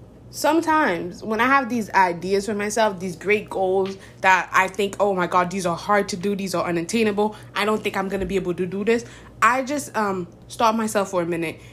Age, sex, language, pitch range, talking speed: 20-39, female, English, 185-225 Hz, 225 wpm